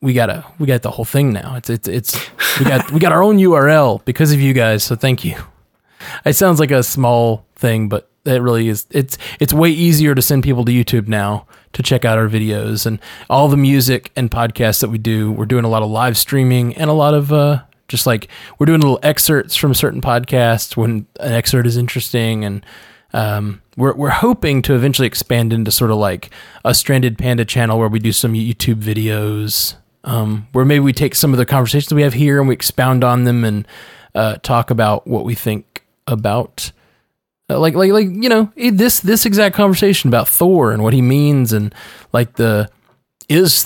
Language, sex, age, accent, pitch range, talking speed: English, male, 20-39, American, 115-145 Hz, 210 wpm